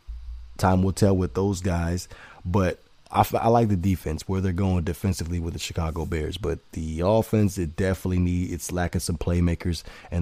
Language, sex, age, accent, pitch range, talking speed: English, male, 20-39, American, 85-95 Hz, 190 wpm